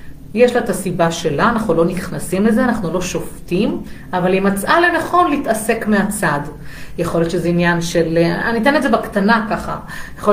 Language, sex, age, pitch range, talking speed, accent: Hebrew, female, 40-59, 170-215 Hz, 165 wpm, native